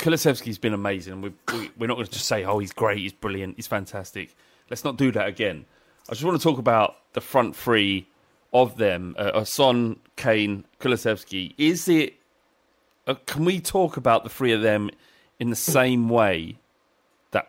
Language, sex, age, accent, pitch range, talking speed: English, male, 30-49, British, 100-135 Hz, 190 wpm